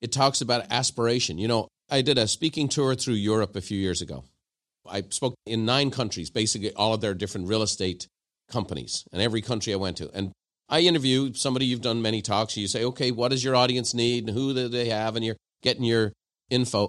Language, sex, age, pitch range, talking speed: English, male, 50-69, 110-135 Hz, 220 wpm